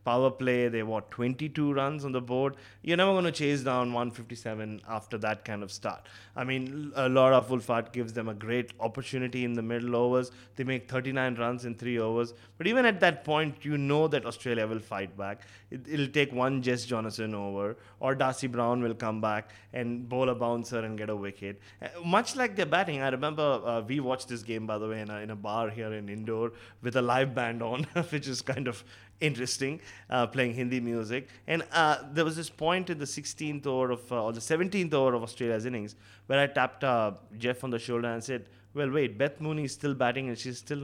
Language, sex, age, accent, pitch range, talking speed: English, male, 20-39, Indian, 115-140 Hz, 215 wpm